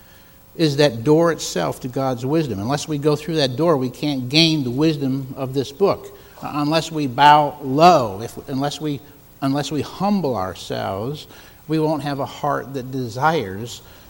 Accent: American